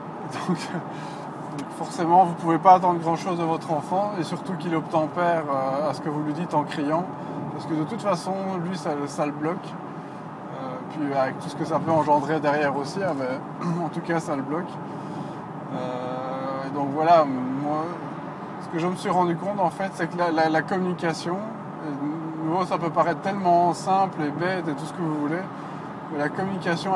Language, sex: French, male